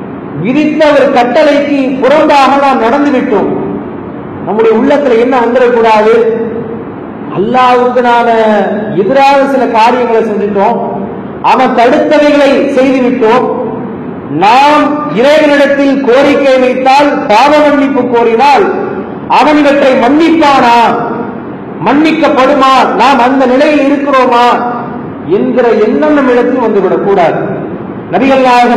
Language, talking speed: English, 75 wpm